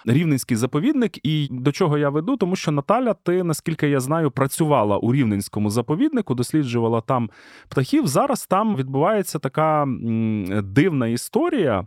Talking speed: 135 wpm